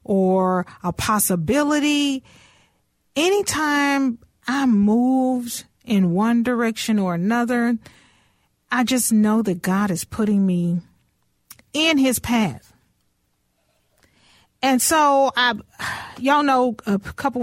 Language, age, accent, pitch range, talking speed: English, 40-59, American, 195-245 Hz, 100 wpm